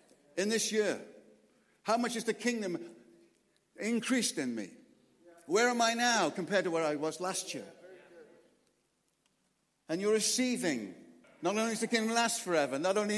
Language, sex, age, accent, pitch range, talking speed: English, male, 60-79, British, 180-235 Hz, 155 wpm